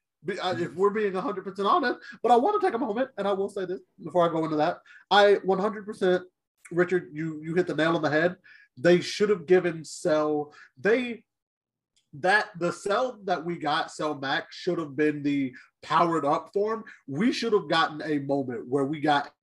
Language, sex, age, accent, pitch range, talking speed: English, male, 30-49, American, 160-225 Hz, 195 wpm